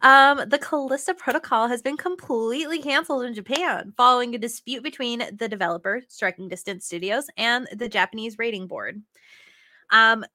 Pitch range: 210-275 Hz